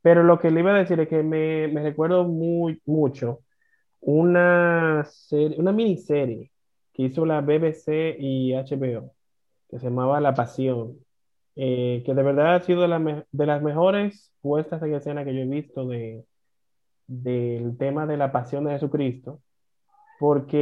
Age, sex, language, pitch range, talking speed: 30-49, male, Spanish, 130-165 Hz, 165 wpm